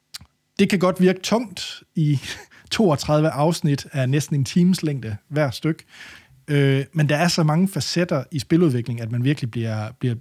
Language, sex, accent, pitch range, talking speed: Danish, male, native, 125-165 Hz, 165 wpm